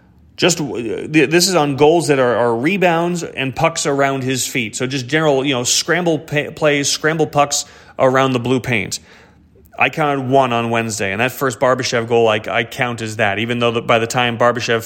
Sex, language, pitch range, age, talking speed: male, English, 120-145 Hz, 30-49, 195 wpm